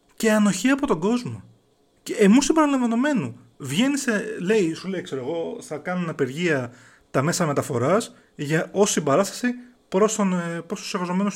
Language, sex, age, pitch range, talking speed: Greek, male, 30-49, 135-195 Hz, 150 wpm